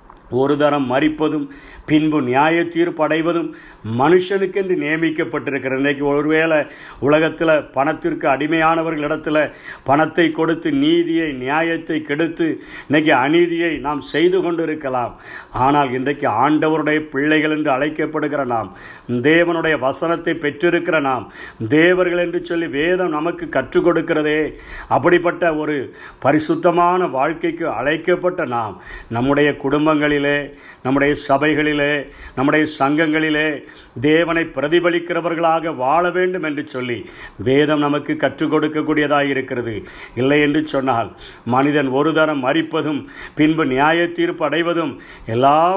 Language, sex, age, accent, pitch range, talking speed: Tamil, male, 50-69, native, 145-170 Hz, 95 wpm